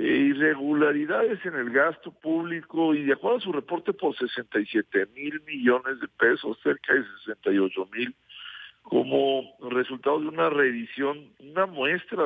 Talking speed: 135 wpm